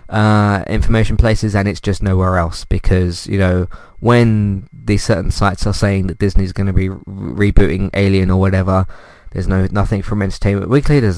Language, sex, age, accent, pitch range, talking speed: English, male, 20-39, British, 95-120 Hz, 175 wpm